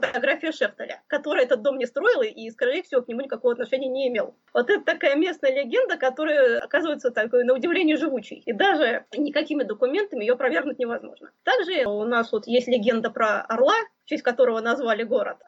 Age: 20-39